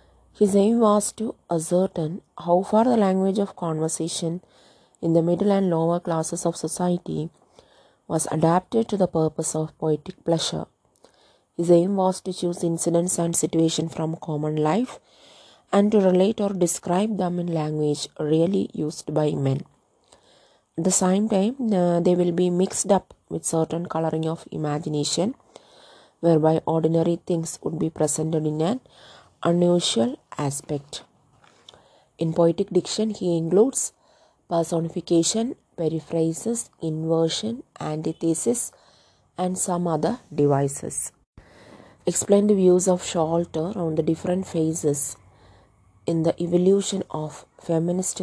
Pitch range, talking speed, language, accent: 160-185 Hz, 125 wpm, English, Indian